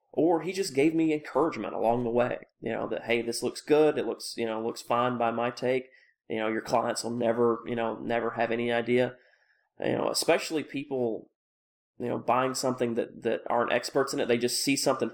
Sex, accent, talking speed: male, American, 220 wpm